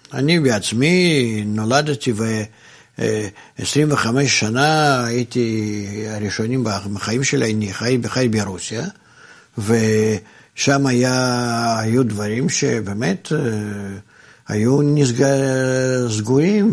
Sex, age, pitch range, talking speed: male, 60-79, 110-150 Hz, 70 wpm